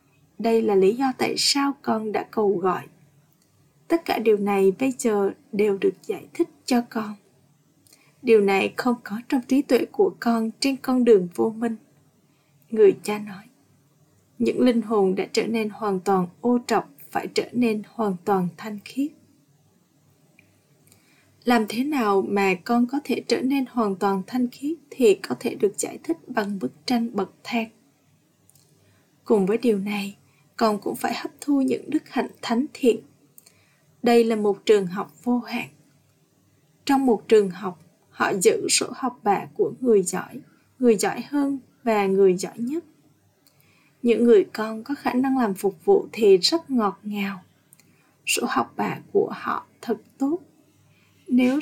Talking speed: 165 wpm